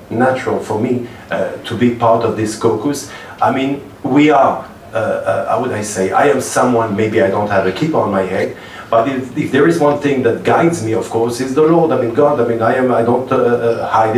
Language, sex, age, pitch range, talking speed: English, male, 40-59, 110-125 Hz, 245 wpm